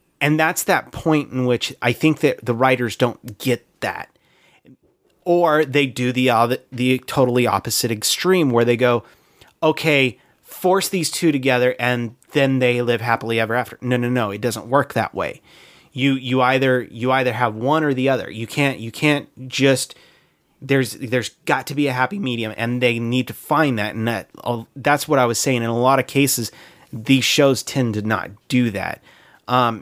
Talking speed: 190 wpm